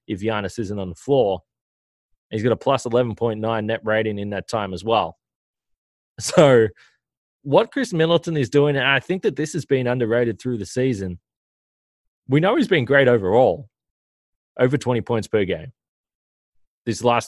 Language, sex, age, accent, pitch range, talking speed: English, male, 20-39, Australian, 100-125 Hz, 165 wpm